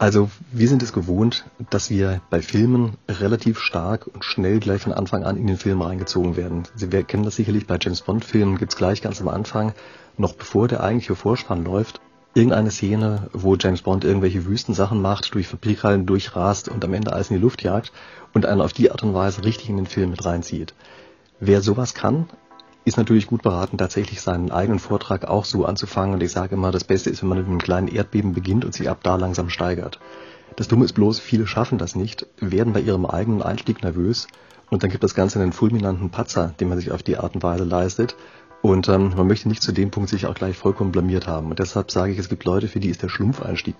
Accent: German